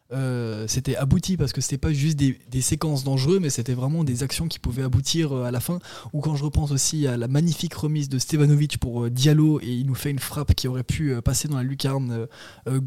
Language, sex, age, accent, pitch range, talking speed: French, male, 20-39, French, 125-145 Hz, 240 wpm